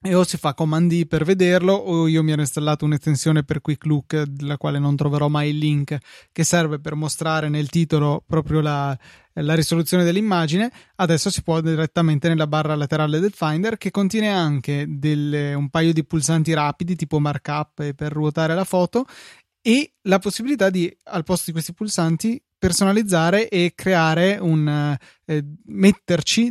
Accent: native